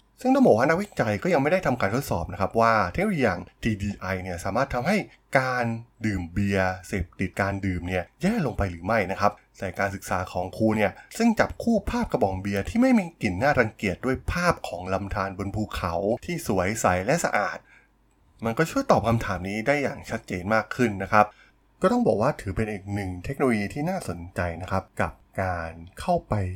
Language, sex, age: Thai, male, 20-39